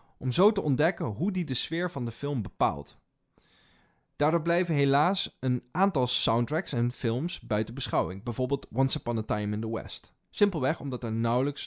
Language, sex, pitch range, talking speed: Dutch, male, 110-150 Hz, 175 wpm